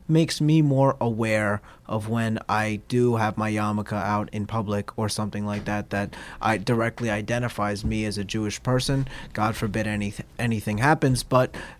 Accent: American